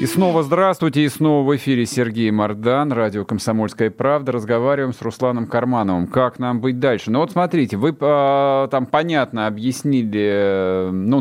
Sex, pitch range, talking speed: male, 110-150 Hz, 150 wpm